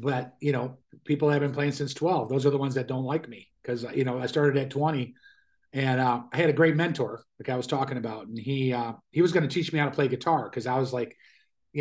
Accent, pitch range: American, 125-155 Hz